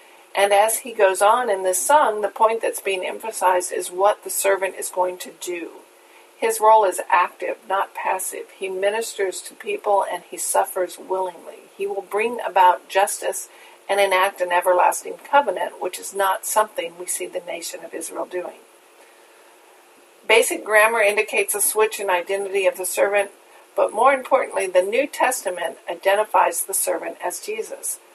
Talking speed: 165 wpm